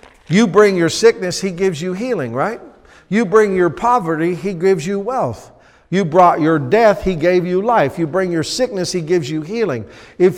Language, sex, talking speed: English, male, 195 wpm